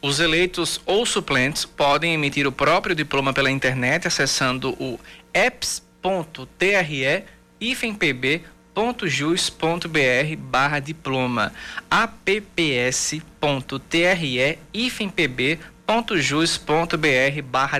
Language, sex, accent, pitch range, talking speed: Portuguese, male, Brazilian, 145-180 Hz, 55 wpm